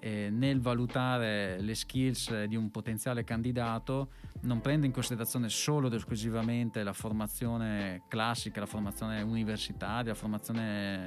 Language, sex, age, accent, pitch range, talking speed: Italian, male, 20-39, native, 110-125 Hz, 125 wpm